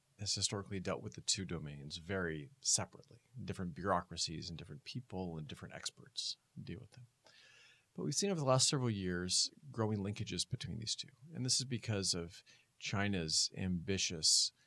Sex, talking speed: male, 165 wpm